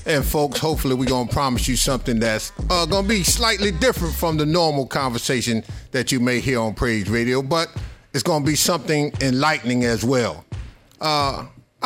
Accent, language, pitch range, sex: American, English, 120-155 Hz, male